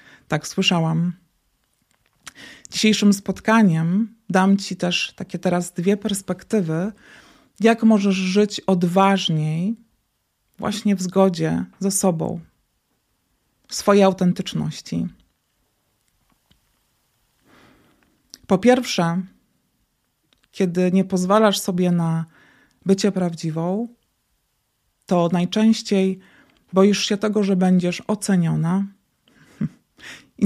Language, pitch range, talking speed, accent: Polish, 175-205 Hz, 80 wpm, native